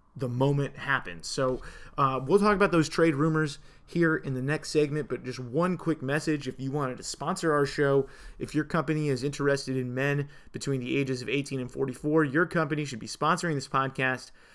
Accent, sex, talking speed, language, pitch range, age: American, male, 200 wpm, English, 130-150 Hz, 30-49